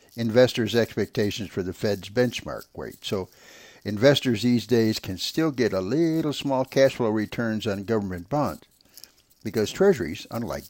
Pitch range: 95-120 Hz